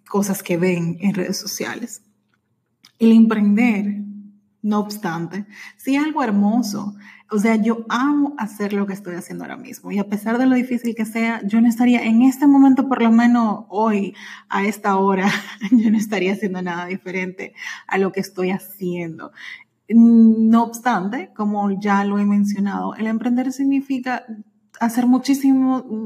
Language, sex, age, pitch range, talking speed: English, female, 30-49, 195-235 Hz, 160 wpm